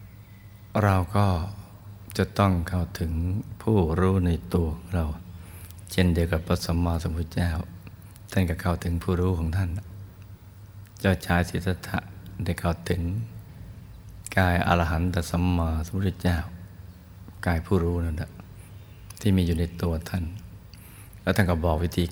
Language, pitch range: Thai, 85-100 Hz